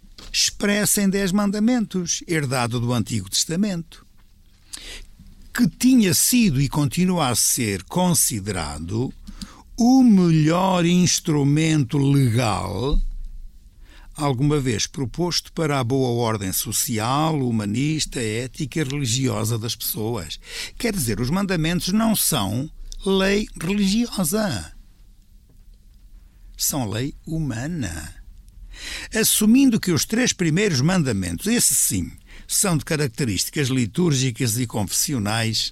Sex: male